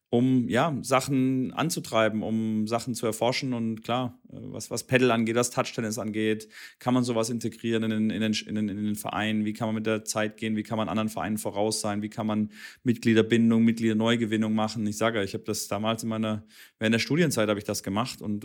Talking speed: 210 wpm